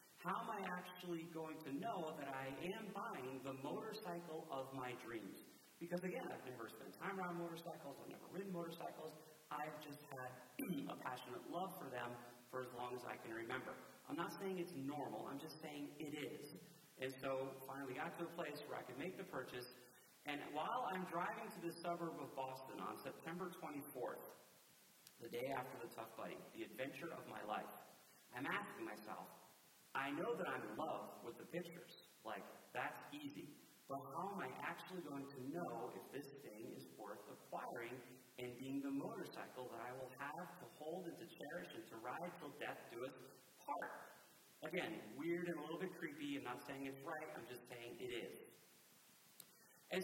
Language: English